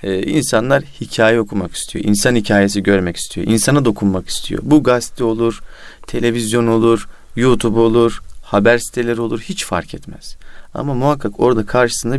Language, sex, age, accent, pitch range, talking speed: Turkish, male, 40-59, native, 100-120 Hz, 145 wpm